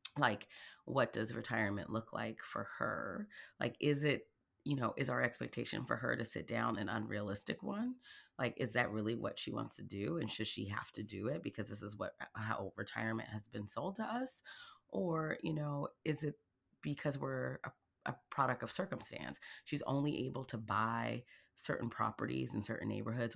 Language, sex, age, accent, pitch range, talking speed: English, female, 30-49, American, 110-140 Hz, 190 wpm